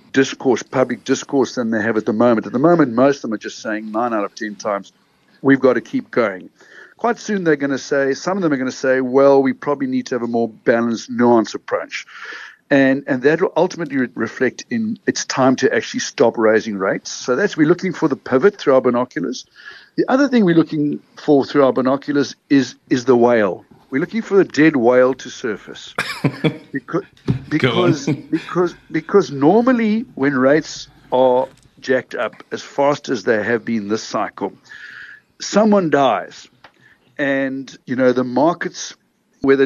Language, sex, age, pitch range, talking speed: English, male, 60-79, 125-160 Hz, 185 wpm